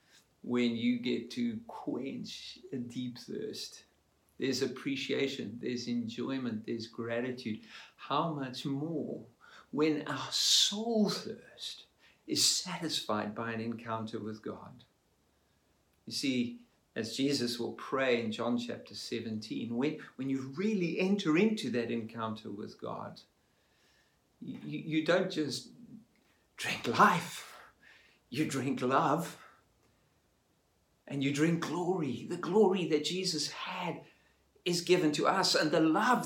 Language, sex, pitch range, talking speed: English, male, 120-180 Hz, 120 wpm